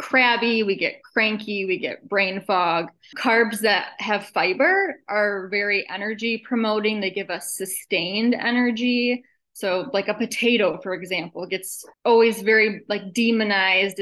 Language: English